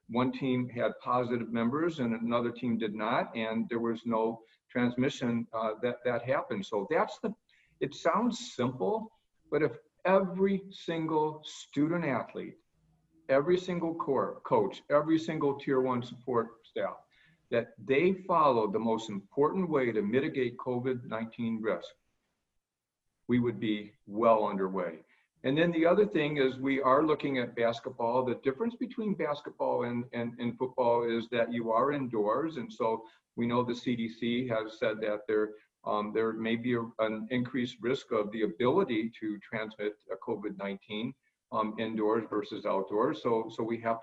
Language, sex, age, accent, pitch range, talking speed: English, male, 50-69, American, 110-140 Hz, 155 wpm